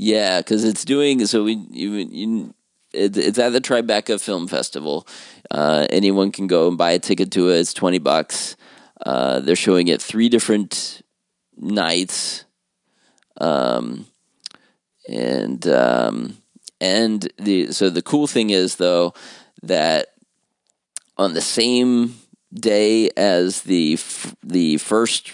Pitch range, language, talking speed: 90-110 Hz, English, 130 wpm